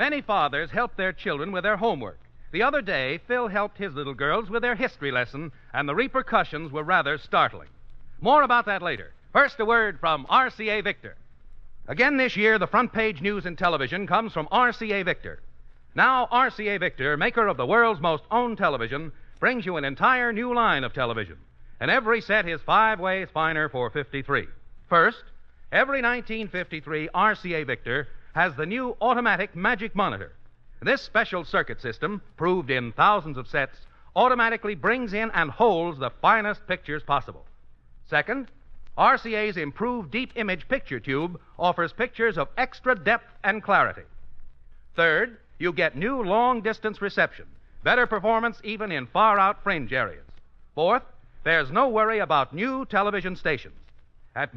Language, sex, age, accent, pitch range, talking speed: English, male, 60-79, American, 150-230 Hz, 155 wpm